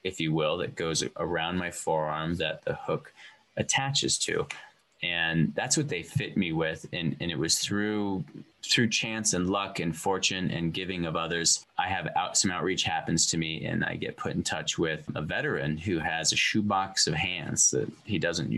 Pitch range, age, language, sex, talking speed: 80-95 Hz, 20-39, English, male, 195 wpm